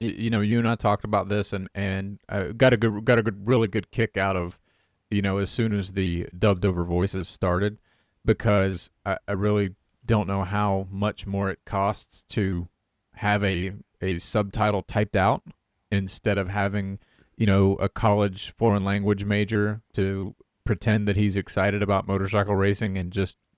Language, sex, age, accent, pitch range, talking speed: English, male, 30-49, American, 100-115 Hz, 180 wpm